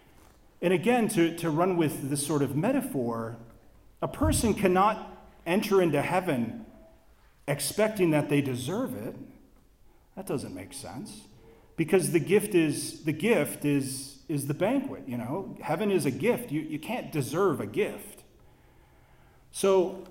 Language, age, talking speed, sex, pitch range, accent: English, 40-59, 145 wpm, male, 140-185 Hz, American